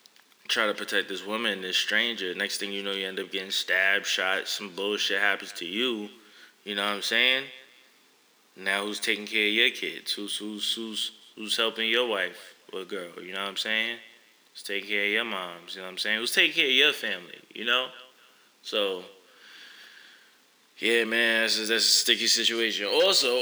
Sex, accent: male, American